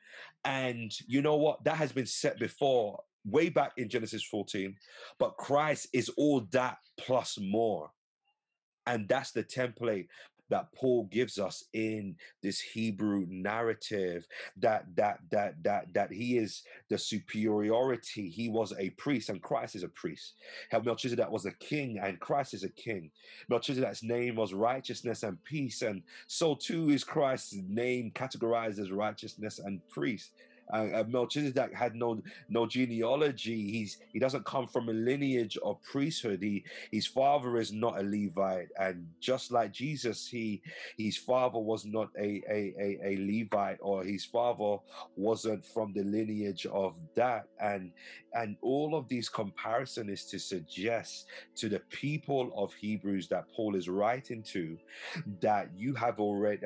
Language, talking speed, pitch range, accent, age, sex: English, 155 wpm, 100-125 Hz, British, 30-49, male